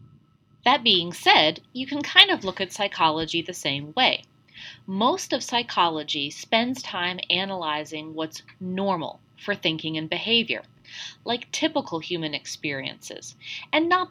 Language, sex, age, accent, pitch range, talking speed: English, female, 30-49, American, 160-265 Hz, 130 wpm